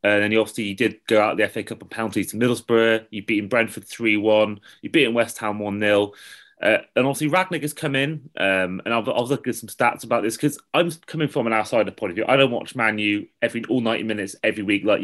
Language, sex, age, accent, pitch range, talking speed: English, male, 20-39, British, 110-135 Hz, 250 wpm